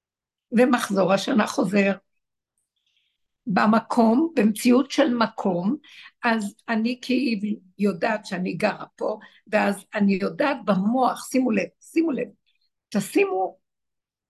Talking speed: 95 wpm